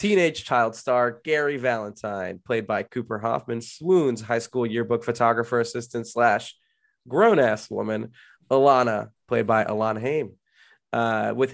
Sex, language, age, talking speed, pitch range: male, English, 20-39, 130 wpm, 110-130 Hz